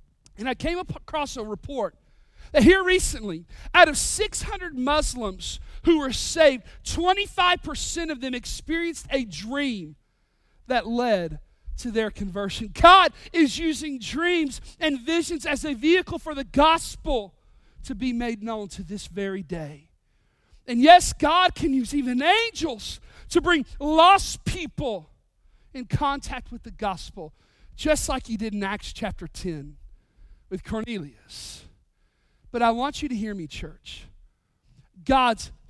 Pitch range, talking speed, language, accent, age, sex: 205-325 Hz, 140 wpm, English, American, 40-59, male